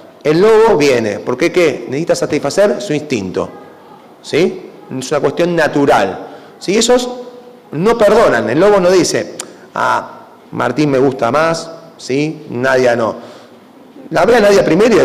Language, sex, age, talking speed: Spanish, male, 30-49, 150 wpm